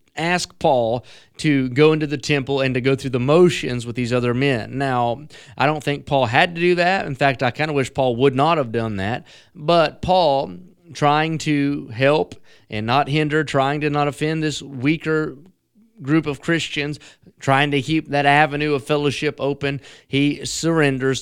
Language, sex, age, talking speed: English, male, 30-49, 185 wpm